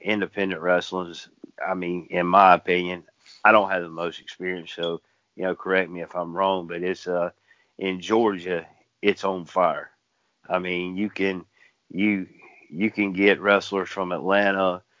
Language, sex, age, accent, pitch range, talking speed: English, male, 50-69, American, 90-100 Hz, 160 wpm